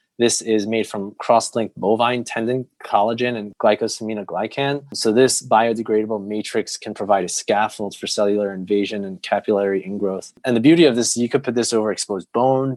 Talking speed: 170 wpm